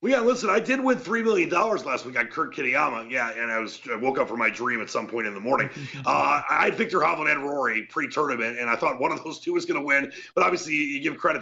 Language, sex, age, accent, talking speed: English, male, 40-59, American, 280 wpm